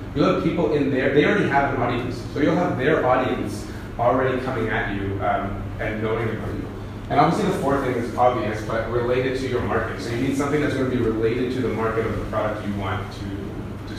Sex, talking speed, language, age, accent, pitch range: male, 235 wpm, English, 30-49, American, 105-130 Hz